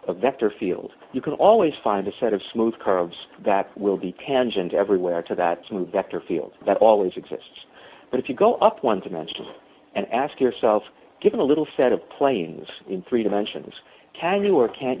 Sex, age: male, 50-69